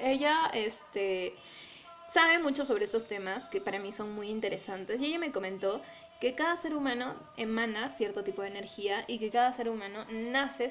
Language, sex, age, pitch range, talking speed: Spanish, female, 10-29, 210-275 Hz, 180 wpm